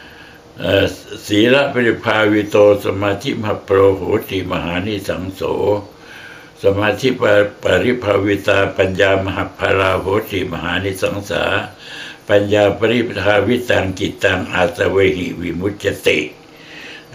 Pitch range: 100-120 Hz